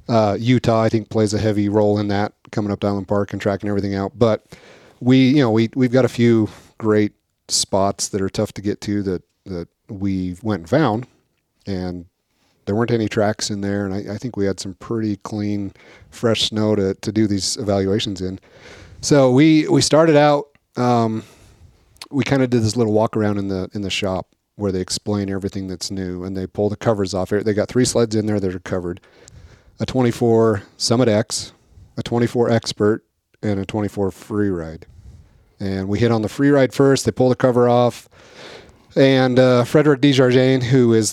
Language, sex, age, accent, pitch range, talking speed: English, male, 40-59, American, 95-115 Hz, 195 wpm